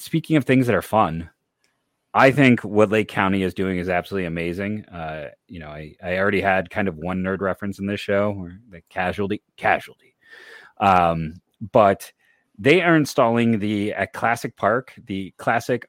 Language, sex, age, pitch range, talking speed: English, male, 30-49, 95-120 Hz, 175 wpm